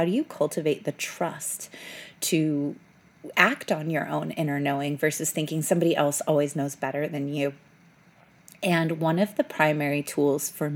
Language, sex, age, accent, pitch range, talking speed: English, female, 30-49, American, 145-175 Hz, 160 wpm